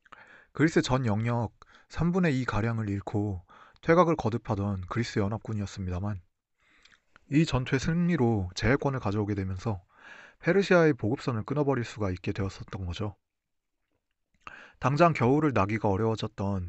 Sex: male